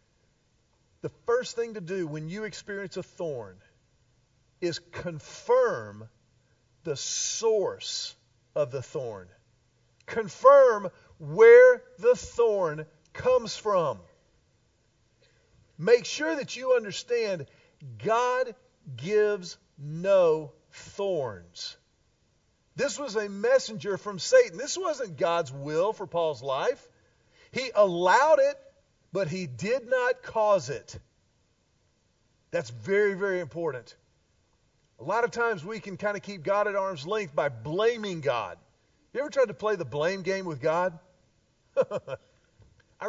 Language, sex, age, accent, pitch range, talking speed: English, male, 50-69, American, 140-230 Hz, 120 wpm